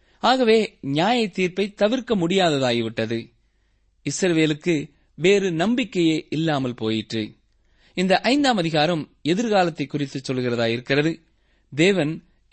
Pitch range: 130-200 Hz